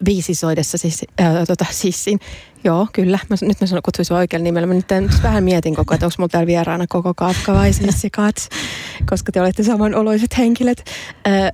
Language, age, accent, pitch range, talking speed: Finnish, 30-49, native, 165-195 Hz, 170 wpm